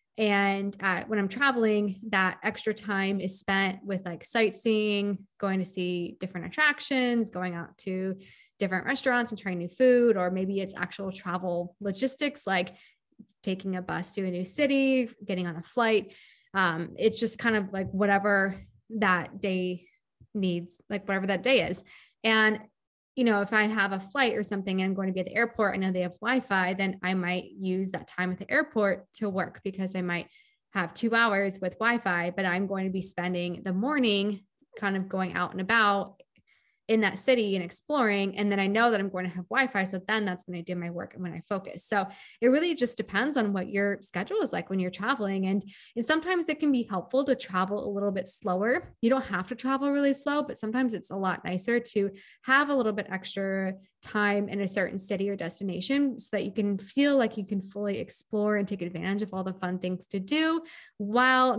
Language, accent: English, American